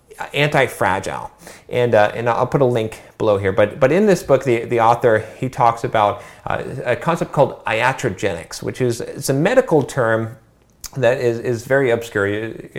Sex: male